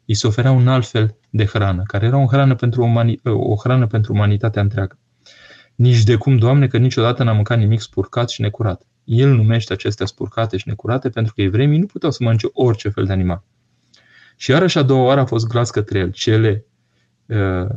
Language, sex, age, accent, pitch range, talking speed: Romanian, male, 20-39, native, 100-125 Hz, 205 wpm